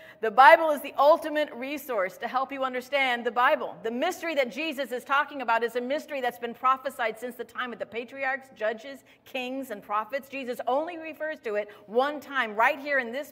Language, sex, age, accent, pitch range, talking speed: English, female, 50-69, American, 215-300 Hz, 205 wpm